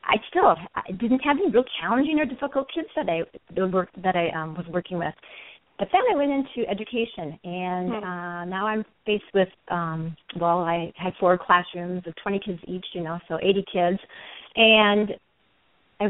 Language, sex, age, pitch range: English, female, 40-59, 175-225 Hz